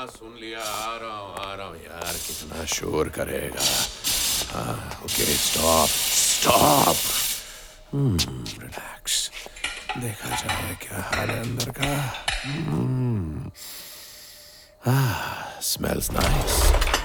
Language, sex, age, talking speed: Hindi, male, 50-69, 65 wpm